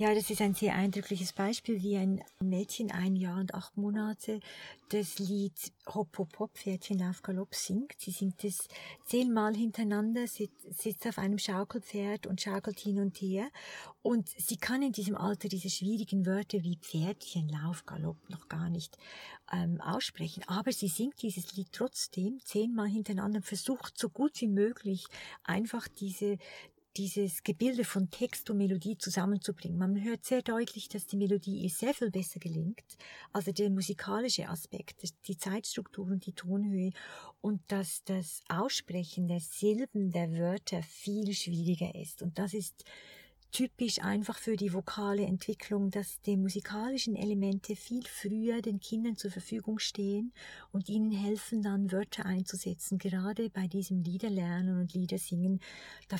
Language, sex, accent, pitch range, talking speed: German, female, Swiss, 185-210 Hz, 155 wpm